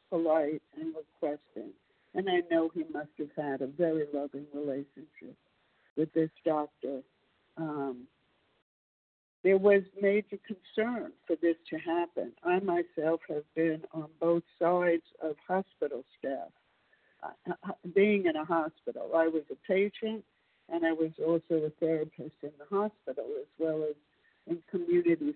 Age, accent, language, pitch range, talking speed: 60-79, American, English, 160-215 Hz, 140 wpm